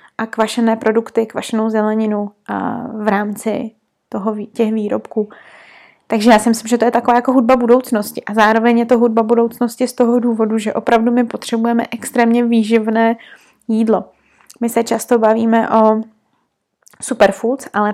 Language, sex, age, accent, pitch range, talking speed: Czech, female, 20-39, native, 215-235 Hz, 150 wpm